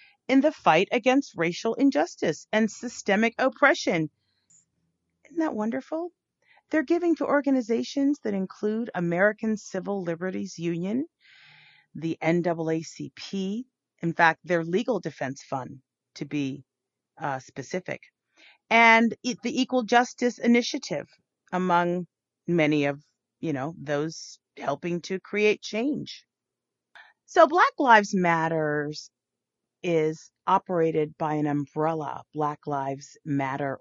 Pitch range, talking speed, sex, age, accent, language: 150-225 Hz, 110 wpm, female, 40-59, American, English